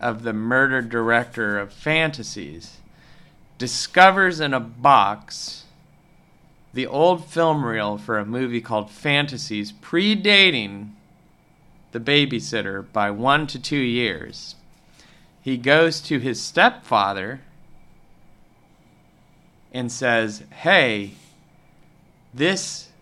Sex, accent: male, American